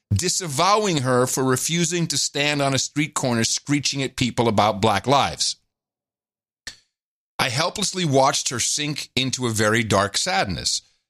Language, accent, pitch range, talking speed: English, American, 100-135 Hz, 140 wpm